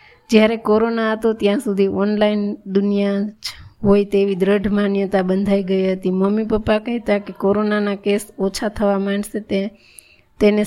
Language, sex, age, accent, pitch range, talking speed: Gujarati, female, 20-39, native, 195-210 Hz, 140 wpm